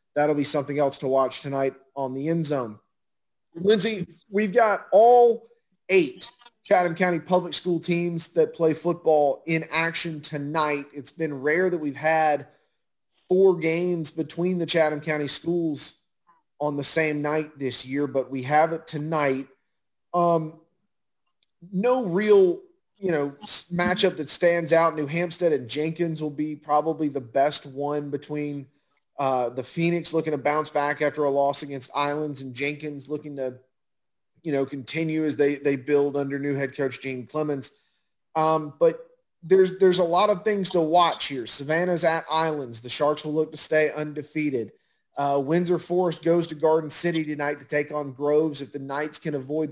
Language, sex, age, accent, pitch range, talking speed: English, male, 30-49, American, 145-170 Hz, 165 wpm